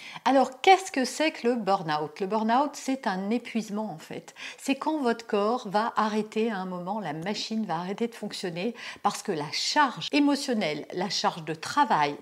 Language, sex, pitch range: French, female, 185-245 Hz